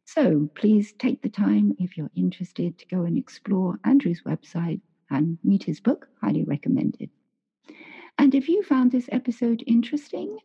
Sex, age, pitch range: female, 50-69, 175-255 Hz